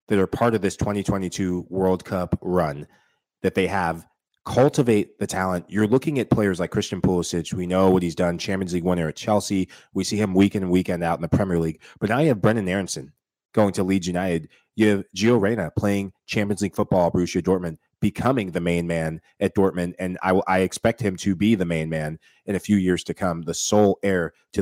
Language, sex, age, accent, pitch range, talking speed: English, male, 30-49, American, 90-110 Hz, 215 wpm